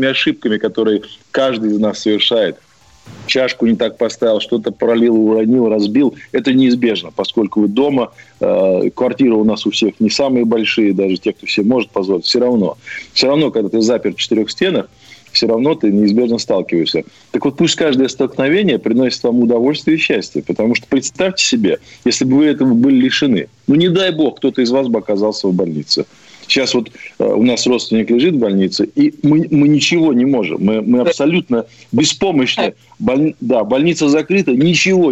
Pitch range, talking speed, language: 105-140 Hz, 175 wpm, Russian